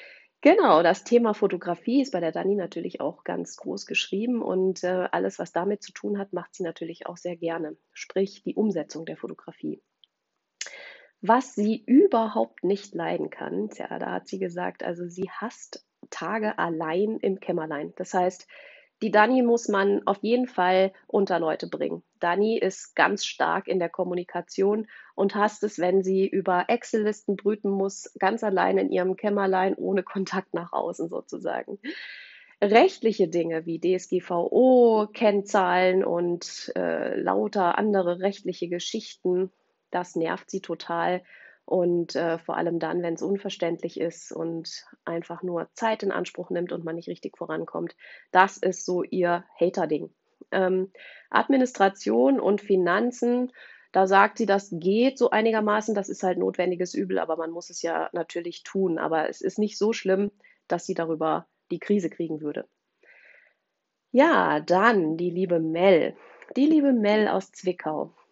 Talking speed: 150 wpm